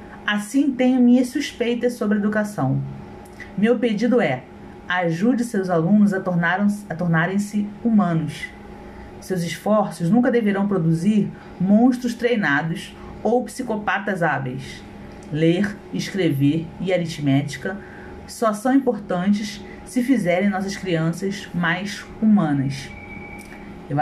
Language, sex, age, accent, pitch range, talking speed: Portuguese, female, 40-59, Brazilian, 165-205 Hz, 100 wpm